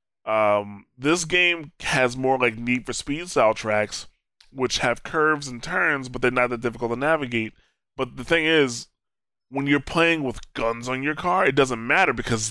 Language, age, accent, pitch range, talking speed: English, 20-39, American, 120-155 Hz, 185 wpm